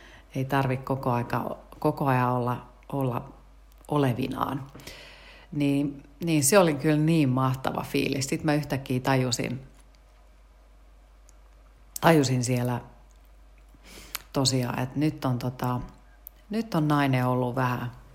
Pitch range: 120-150 Hz